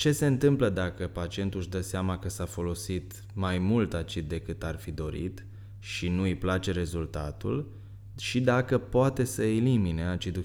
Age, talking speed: 20-39, 165 wpm